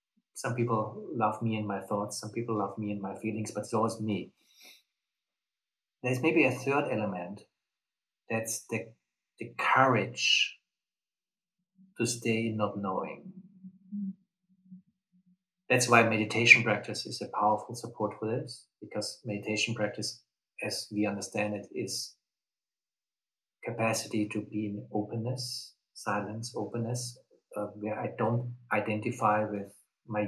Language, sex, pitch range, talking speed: English, male, 105-125 Hz, 125 wpm